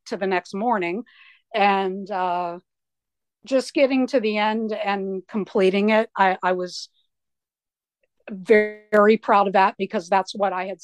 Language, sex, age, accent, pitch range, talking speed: English, female, 50-69, American, 190-225 Hz, 150 wpm